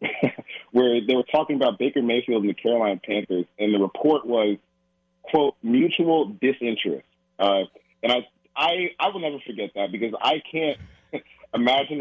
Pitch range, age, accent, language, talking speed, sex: 100-130 Hz, 30-49, American, English, 155 wpm, male